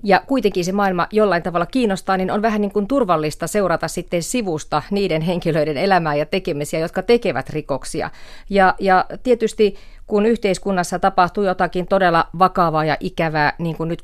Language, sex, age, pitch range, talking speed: Finnish, female, 30-49, 160-200 Hz, 165 wpm